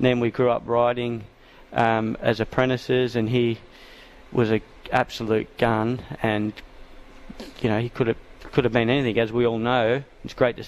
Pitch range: 110-130 Hz